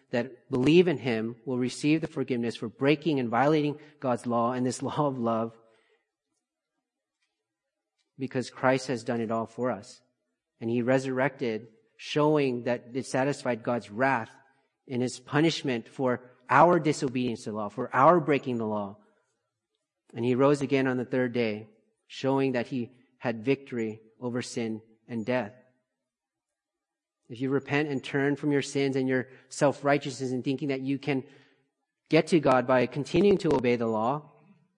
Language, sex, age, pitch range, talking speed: English, male, 40-59, 125-140 Hz, 160 wpm